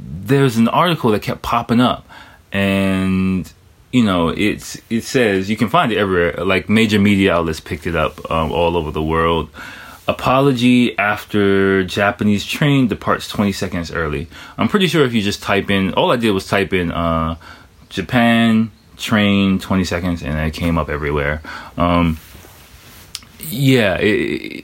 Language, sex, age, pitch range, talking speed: English, male, 20-39, 85-115 Hz, 155 wpm